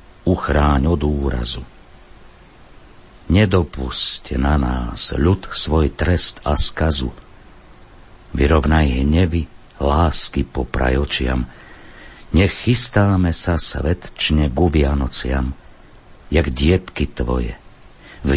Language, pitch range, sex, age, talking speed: Slovak, 70-90 Hz, male, 60-79, 80 wpm